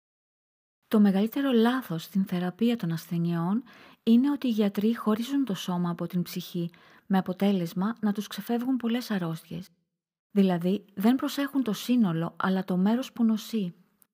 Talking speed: 145 wpm